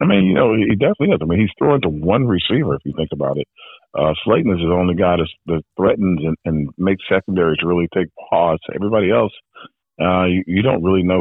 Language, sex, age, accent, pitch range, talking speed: English, male, 40-59, American, 75-95 Hz, 230 wpm